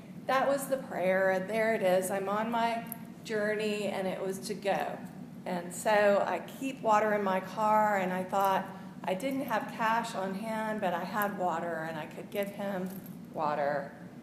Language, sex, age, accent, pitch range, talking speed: English, female, 40-59, American, 190-240 Hz, 185 wpm